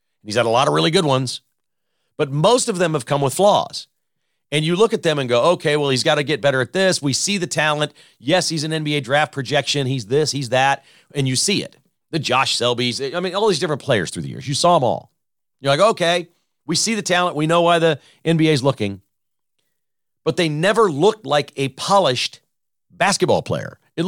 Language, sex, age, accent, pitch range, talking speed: English, male, 40-59, American, 135-175 Hz, 225 wpm